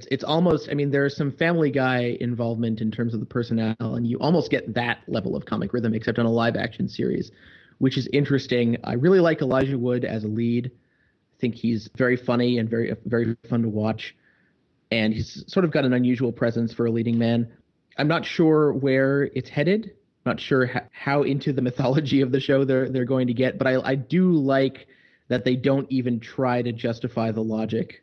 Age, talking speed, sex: 30-49, 215 wpm, male